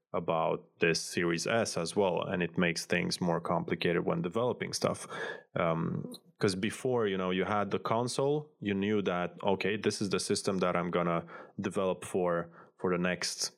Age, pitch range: 20-39, 90-105 Hz